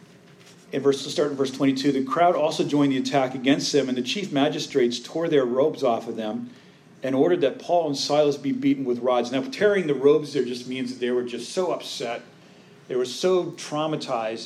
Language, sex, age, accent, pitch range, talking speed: English, male, 40-59, American, 125-155 Hz, 210 wpm